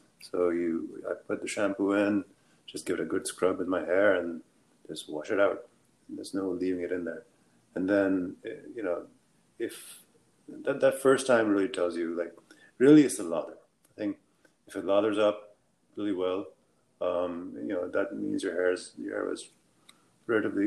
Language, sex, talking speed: English, male, 190 wpm